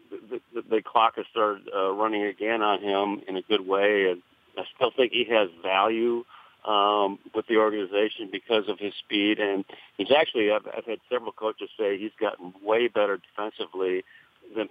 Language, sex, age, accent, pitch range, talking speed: English, male, 50-69, American, 100-135 Hz, 185 wpm